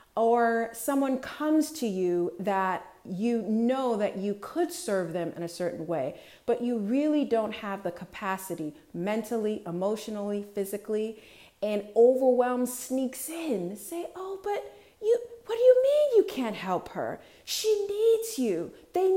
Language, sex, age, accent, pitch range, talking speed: English, female, 40-59, American, 190-260 Hz, 145 wpm